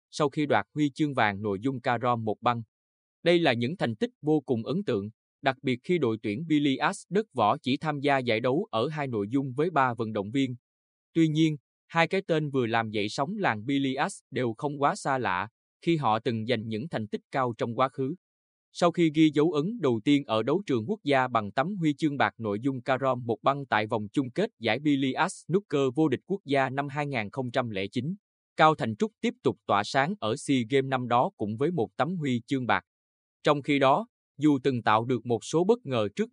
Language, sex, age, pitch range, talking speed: Vietnamese, male, 20-39, 115-155 Hz, 225 wpm